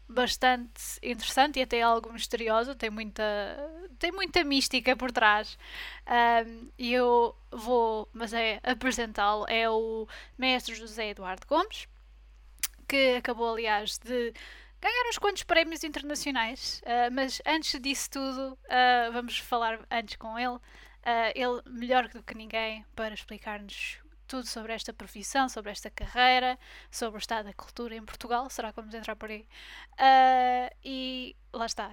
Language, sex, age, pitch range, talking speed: Portuguese, female, 10-29, 220-255 Hz, 145 wpm